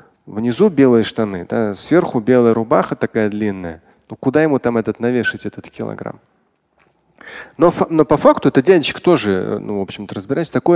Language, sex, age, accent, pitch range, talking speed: Russian, male, 20-39, native, 110-145 Hz, 155 wpm